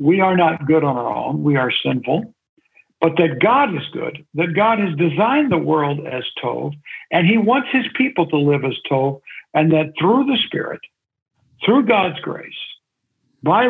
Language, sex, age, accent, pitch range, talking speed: English, male, 60-79, American, 145-190 Hz, 180 wpm